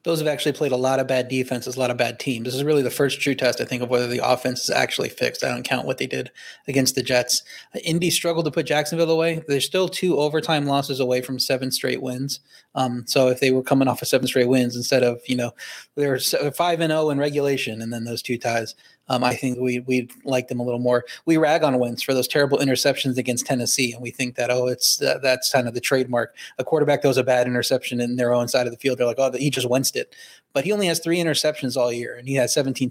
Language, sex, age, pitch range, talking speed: English, male, 30-49, 125-140 Hz, 265 wpm